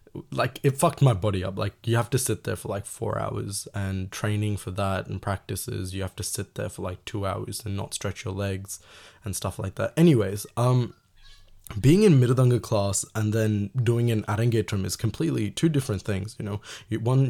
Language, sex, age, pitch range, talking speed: Tamil, male, 20-39, 100-120 Hz, 205 wpm